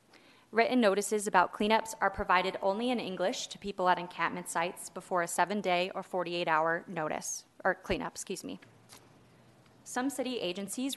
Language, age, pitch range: English, 20-39, 180-220 Hz